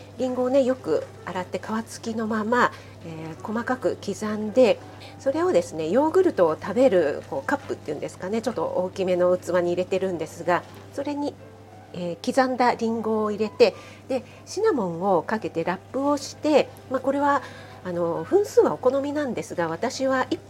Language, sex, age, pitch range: Japanese, female, 40-59, 180-270 Hz